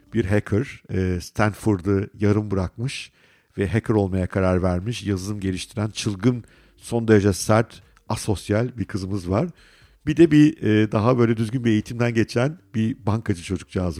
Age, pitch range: 50-69, 95-120 Hz